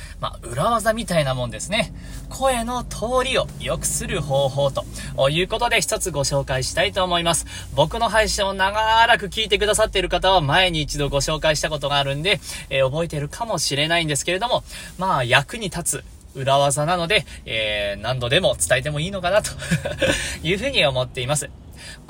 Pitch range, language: 140-205 Hz, Japanese